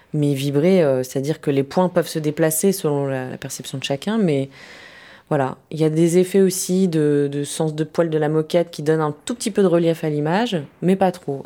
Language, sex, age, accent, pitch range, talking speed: French, female, 20-39, French, 145-185 Hz, 225 wpm